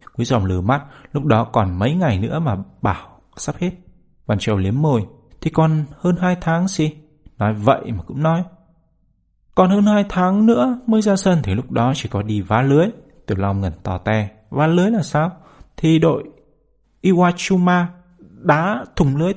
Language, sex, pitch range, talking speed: Vietnamese, male, 105-155 Hz, 185 wpm